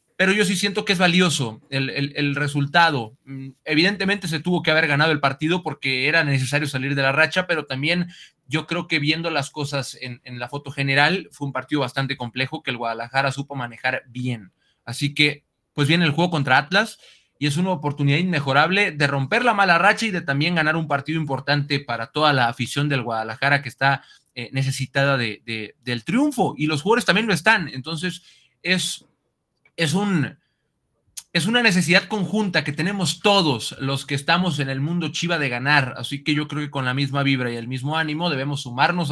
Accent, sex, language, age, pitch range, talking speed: Mexican, male, Spanish, 30-49, 140-180 Hz, 195 wpm